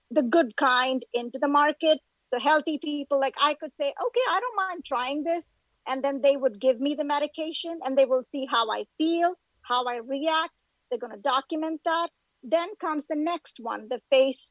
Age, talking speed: 50-69, 205 wpm